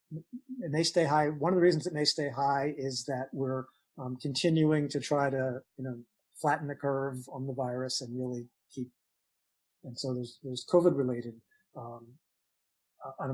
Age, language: 40-59, English